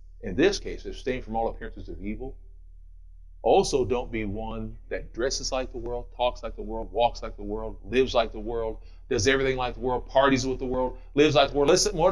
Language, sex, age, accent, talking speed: English, male, 40-59, American, 225 wpm